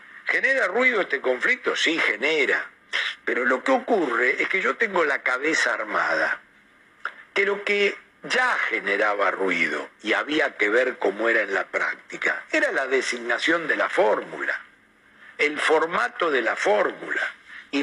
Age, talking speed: 60-79, 150 wpm